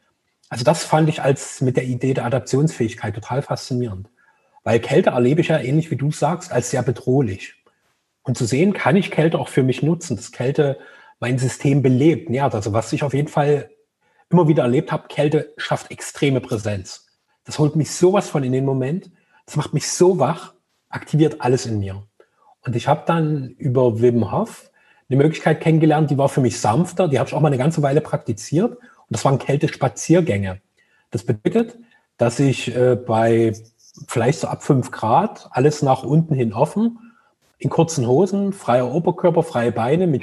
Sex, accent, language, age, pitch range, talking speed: male, German, German, 30-49, 125-165 Hz, 185 wpm